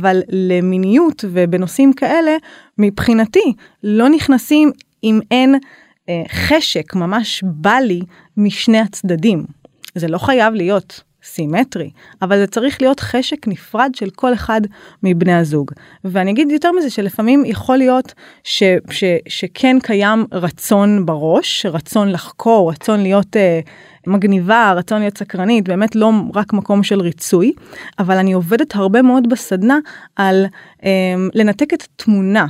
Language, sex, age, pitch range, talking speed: Hebrew, female, 30-49, 185-245 Hz, 130 wpm